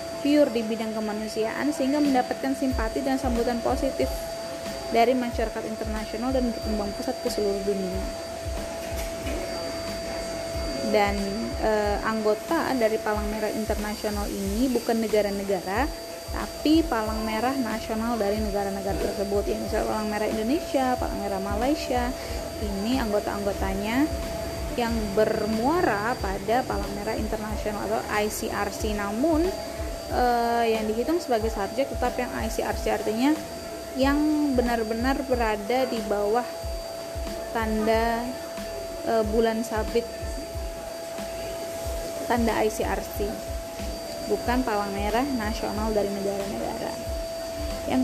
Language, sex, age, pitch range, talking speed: Indonesian, female, 20-39, 215-255 Hz, 100 wpm